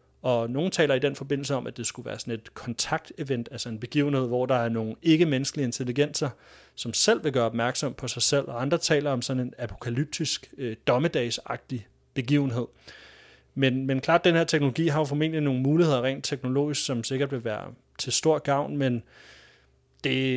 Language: Danish